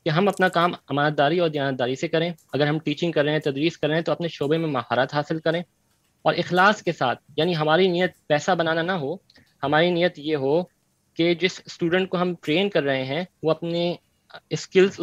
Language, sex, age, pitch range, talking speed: Urdu, male, 20-39, 150-180 Hz, 215 wpm